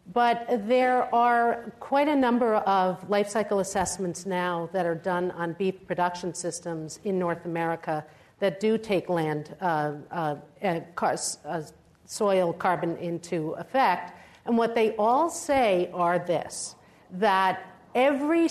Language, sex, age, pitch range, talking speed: English, female, 50-69, 180-220 Hz, 135 wpm